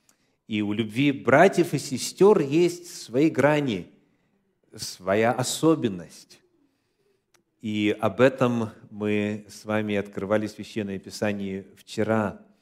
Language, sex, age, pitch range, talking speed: Russian, male, 40-59, 100-150 Hz, 105 wpm